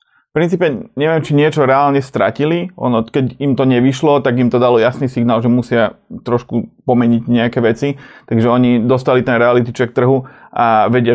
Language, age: Slovak, 30-49